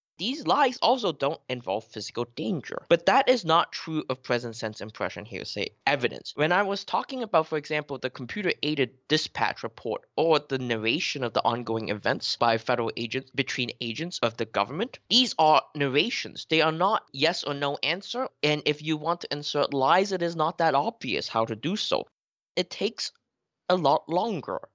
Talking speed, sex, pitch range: 180 wpm, male, 125-180 Hz